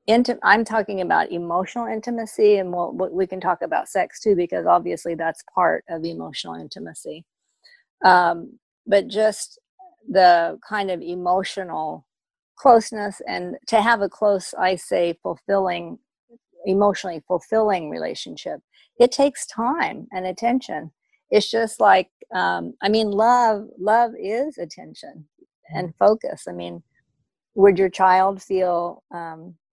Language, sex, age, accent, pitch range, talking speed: English, female, 50-69, American, 175-220 Hz, 130 wpm